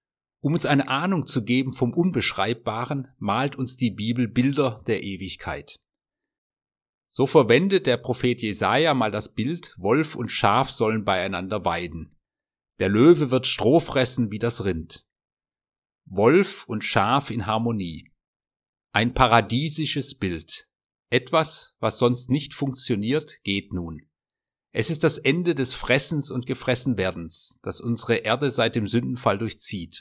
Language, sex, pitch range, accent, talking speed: German, male, 110-135 Hz, German, 135 wpm